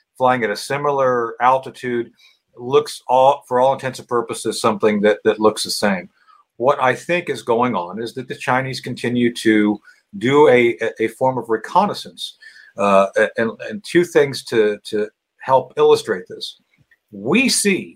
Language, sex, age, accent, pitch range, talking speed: English, male, 50-69, American, 125-185 Hz, 160 wpm